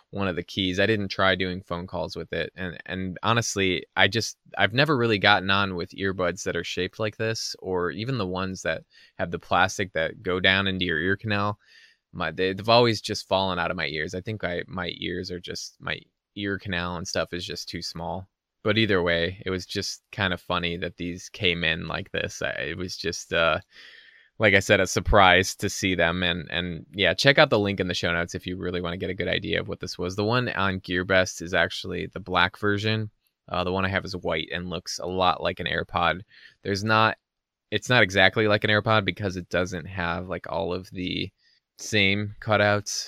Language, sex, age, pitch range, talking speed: English, male, 20-39, 90-100 Hz, 225 wpm